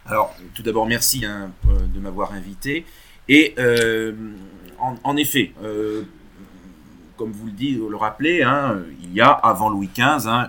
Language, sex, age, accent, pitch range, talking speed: French, male, 40-59, French, 95-115 Hz, 165 wpm